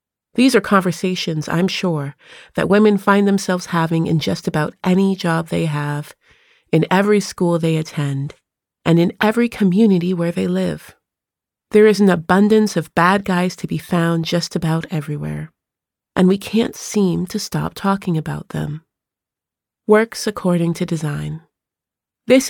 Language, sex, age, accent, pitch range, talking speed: English, female, 30-49, American, 165-195 Hz, 150 wpm